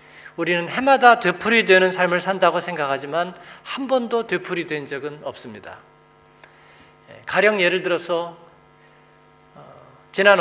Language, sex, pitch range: Korean, male, 150-190 Hz